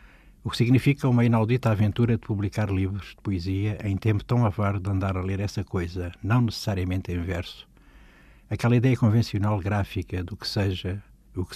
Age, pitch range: 60-79, 95-115 Hz